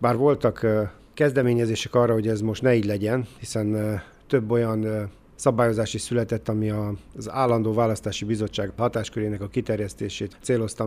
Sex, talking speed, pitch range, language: male, 140 wpm, 105-120 Hz, Hungarian